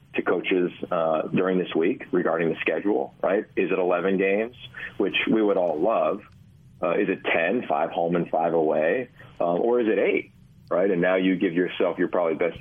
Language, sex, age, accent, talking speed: English, male, 40-59, American, 200 wpm